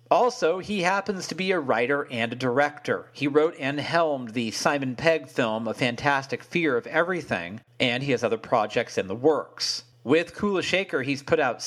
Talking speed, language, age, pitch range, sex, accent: 190 wpm, English, 40-59, 120-165 Hz, male, American